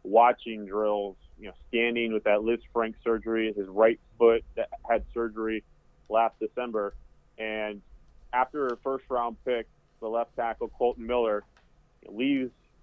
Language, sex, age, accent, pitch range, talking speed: English, male, 30-49, American, 110-125 Hz, 135 wpm